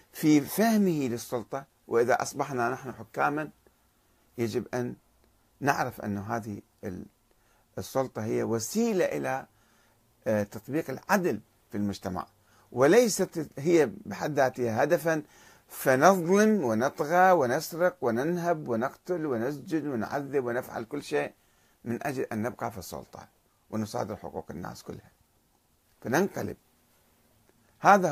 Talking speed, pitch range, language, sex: 100 wpm, 110-150 Hz, Arabic, male